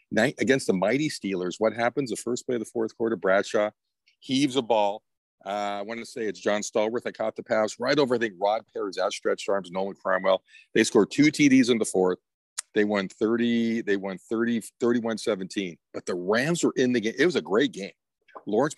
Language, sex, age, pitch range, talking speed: English, male, 50-69, 100-145 Hz, 210 wpm